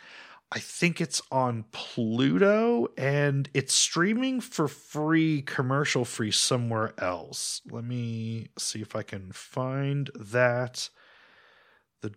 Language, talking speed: English, 110 wpm